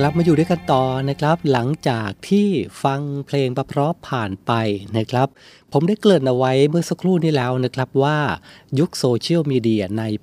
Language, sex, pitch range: Thai, male, 115-145 Hz